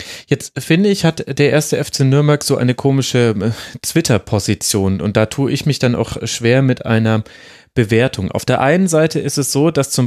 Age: 30-49